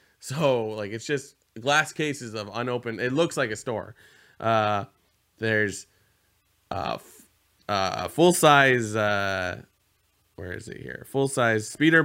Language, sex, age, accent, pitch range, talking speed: English, male, 20-39, American, 110-145 Hz, 125 wpm